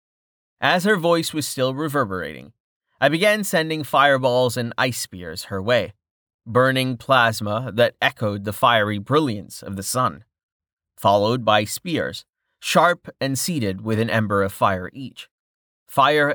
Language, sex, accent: English, male, American